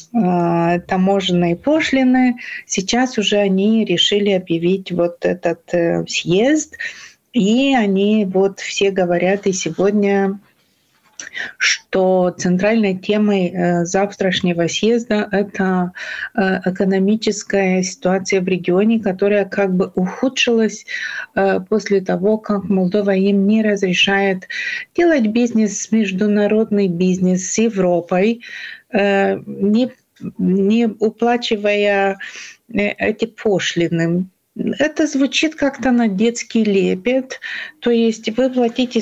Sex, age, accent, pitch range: female, 30-49, native, 185-235 Hz